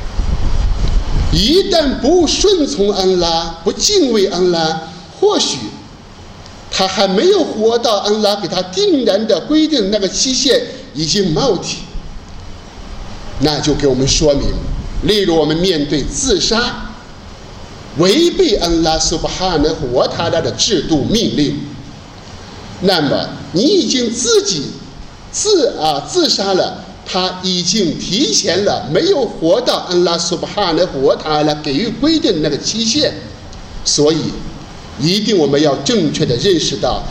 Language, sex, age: Chinese, male, 50-69